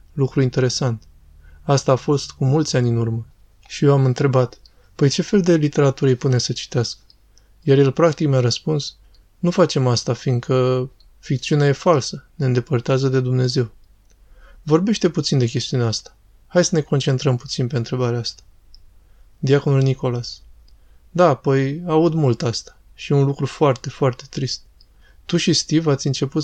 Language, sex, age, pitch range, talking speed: Romanian, male, 20-39, 125-145 Hz, 160 wpm